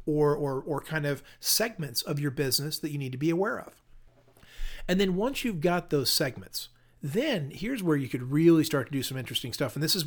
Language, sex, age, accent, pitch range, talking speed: English, male, 40-59, American, 140-180 Hz, 225 wpm